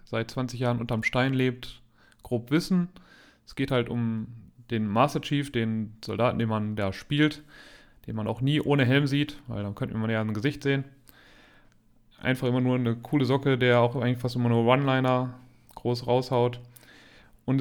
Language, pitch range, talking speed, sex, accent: German, 120-145 Hz, 175 wpm, male, German